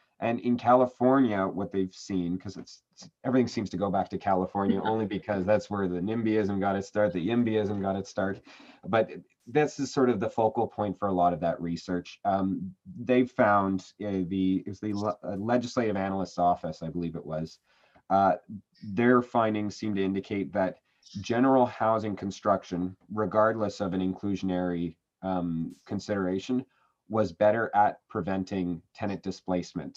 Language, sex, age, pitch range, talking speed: English, male, 30-49, 95-115 Hz, 160 wpm